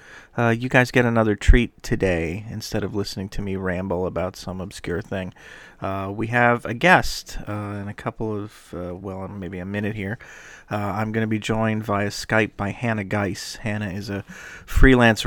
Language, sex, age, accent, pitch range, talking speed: English, male, 40-59, American, 100-115 Hz, 190 wpm